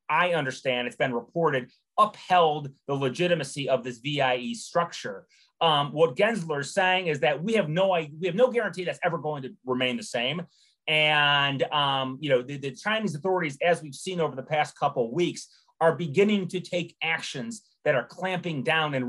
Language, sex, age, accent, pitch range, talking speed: English, male, 30-49, American, 140-180 Hz, 190 wpm